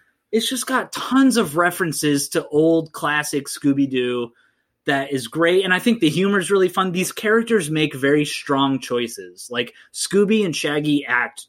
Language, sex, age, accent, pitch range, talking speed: English, male, 20-39, American, 125-170 Hz, 165 wpm